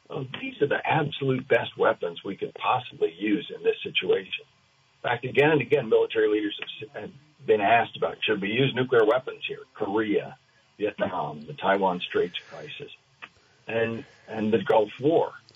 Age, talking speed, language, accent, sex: 50-69, 160 wpm, English, American, male